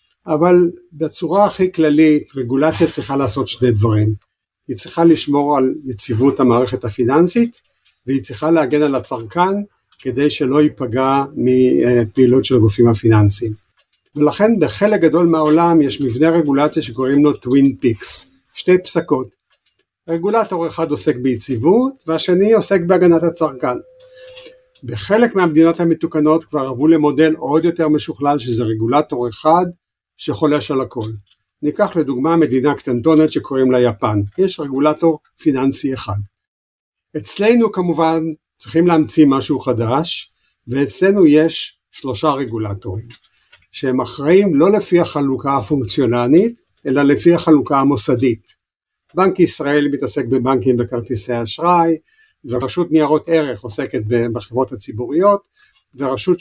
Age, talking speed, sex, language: 50-69, 115 wpm, male, Hebrew